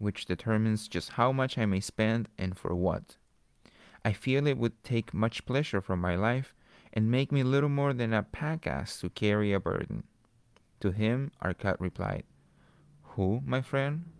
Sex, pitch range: male, 95-125 Hz